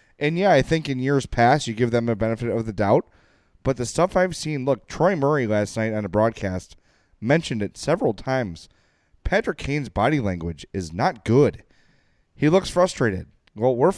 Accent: American